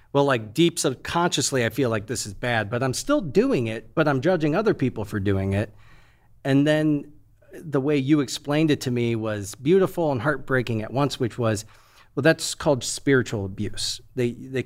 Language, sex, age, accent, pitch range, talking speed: English, male, 40-59, American, 110-135 Hz, 190 wpm